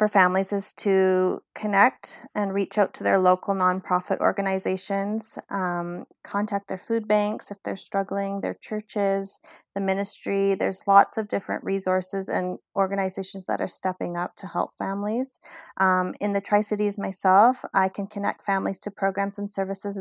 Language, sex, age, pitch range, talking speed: English, female, 30-49, 185-205 Hz, 155 wpm